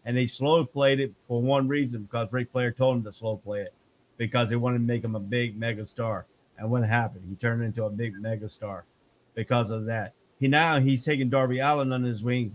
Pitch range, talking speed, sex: 115-130 Hz, 235 wpm, male